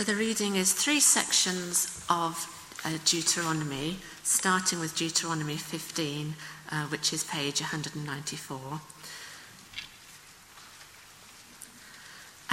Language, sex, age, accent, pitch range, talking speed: English, female, 50-69, British, 160-215 Hz, 75 wpm